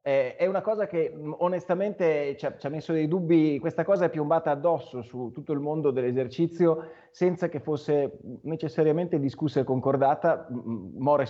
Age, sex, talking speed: 30-49, male, 155 wpm